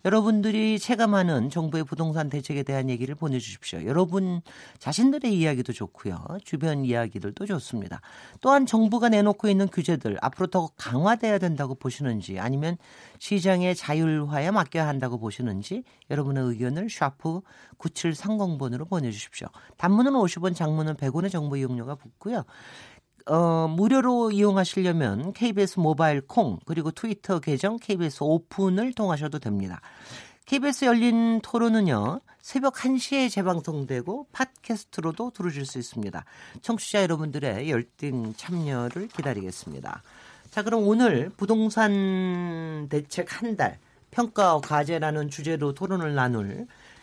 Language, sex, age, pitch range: Korean, male, 40-59, 140-205 Hz